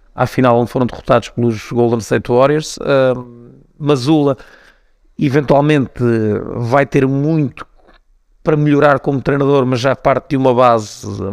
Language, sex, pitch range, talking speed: Portuguese, male, 120-140 Hz, 130 wpm